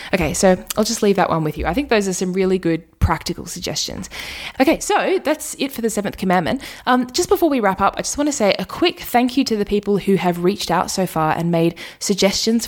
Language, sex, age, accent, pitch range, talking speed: English, female, 20-39, Australian, 185-265 Hz, 250 wpm